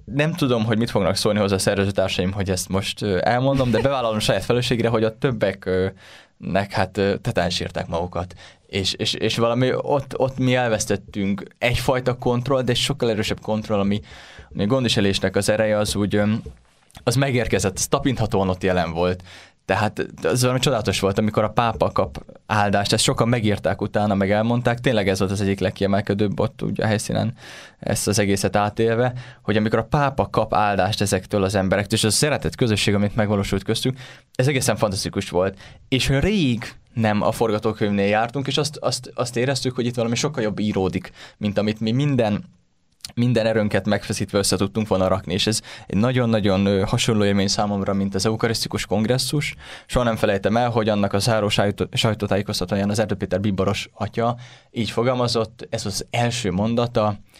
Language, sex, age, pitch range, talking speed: Hungarian, male, 20-39, 95-120 Hz, 170 wpm